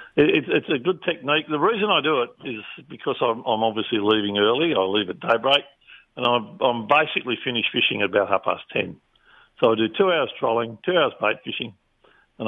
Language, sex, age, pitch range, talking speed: English, male, 60-79, 105-140 Hz, 205 wpm